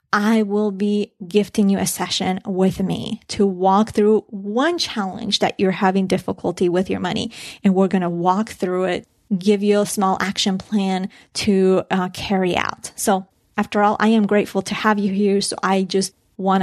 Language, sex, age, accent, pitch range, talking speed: English, female, 30-49, American, 190-210 Hz, 190 wpm